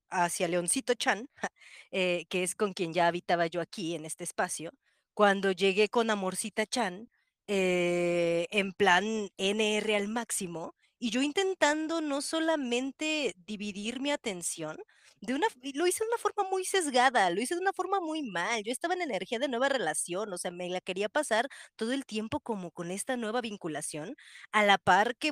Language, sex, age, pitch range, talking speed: Spanish, female, 30-49, 180-230 Hz, 180 wpm